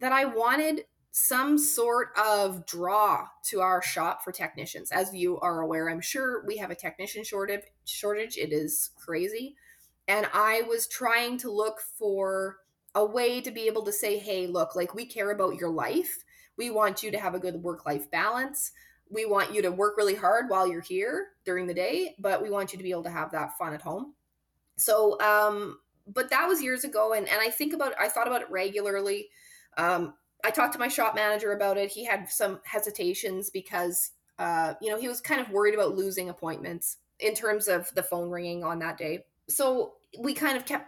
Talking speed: 205 wpm